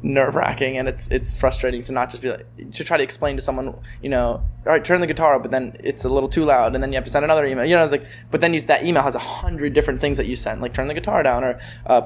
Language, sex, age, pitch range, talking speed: English, male, 20-39, 125-145 Hz, 320 wpm